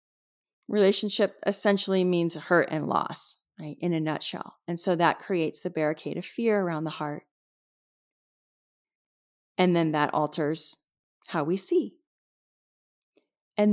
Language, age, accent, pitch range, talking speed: English, 30-49, American, 165-205 Hz, 125 wpm